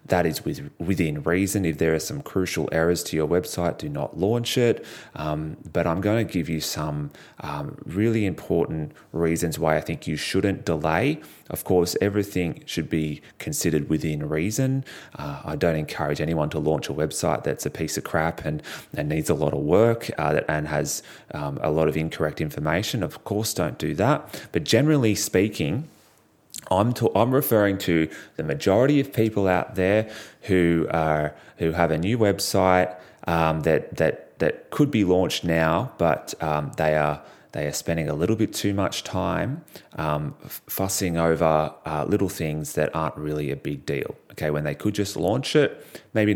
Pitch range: 80-105 Hz